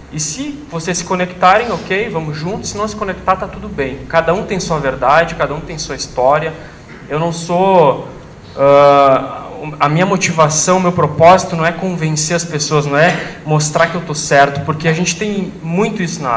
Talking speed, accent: 195 wpm, Brazilian